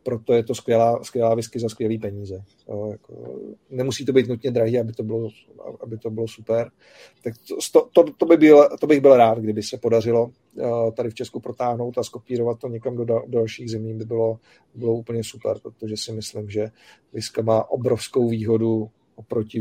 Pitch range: 110-120 Hz